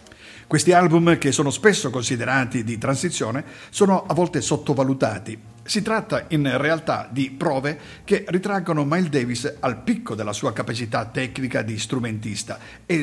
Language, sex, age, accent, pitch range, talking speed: Italian, male, 50-69, native, 115-165 Hz, 145 wpm